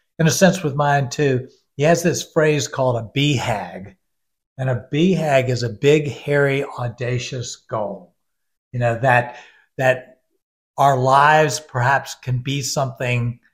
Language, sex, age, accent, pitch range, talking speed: English, male, 60-79, American, 120-145 Hz, 150 wpm